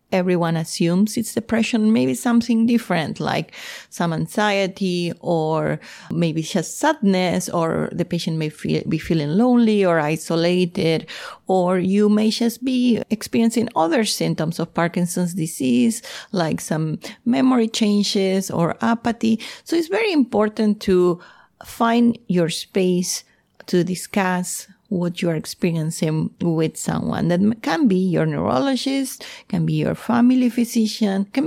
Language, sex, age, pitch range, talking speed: English, female, 30-49, 170-225 Hz, 130 wpm